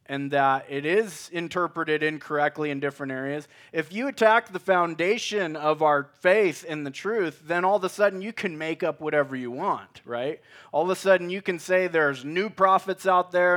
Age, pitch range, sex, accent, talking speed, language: 30-49, 150-190 Hz, male, American, 200 wpm, English